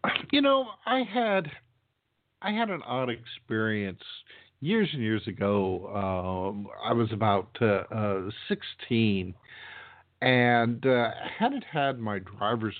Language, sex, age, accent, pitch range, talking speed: English, male, 50-69, American, 100-125 Hz, 120 wpm